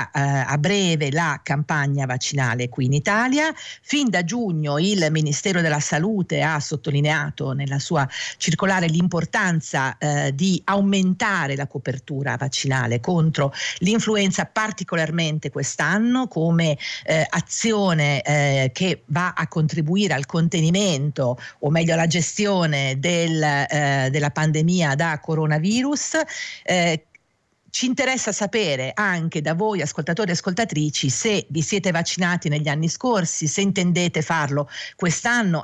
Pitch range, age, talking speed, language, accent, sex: 145-195 Hz, 50-69, 120 wpm, Italian, native, female